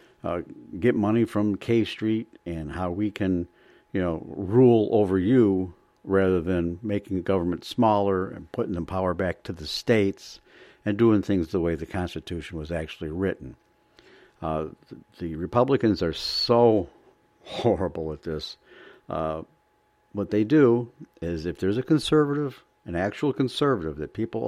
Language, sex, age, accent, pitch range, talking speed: English, male, 60-79, American, 85-115 Hz, 150 wpm